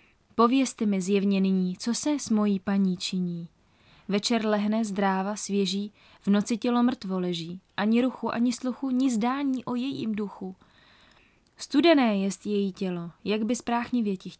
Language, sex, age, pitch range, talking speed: Czech, female, 20-39, 180-220 Hz, 150 wpm